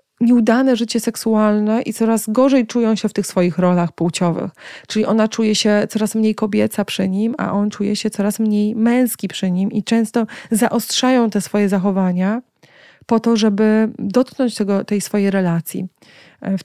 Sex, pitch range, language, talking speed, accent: female, 190-220 Hz, Polish, 160 wpm, native